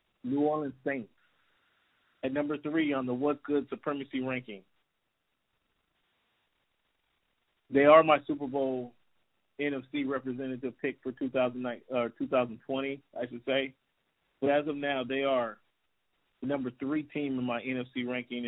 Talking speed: 130 wpm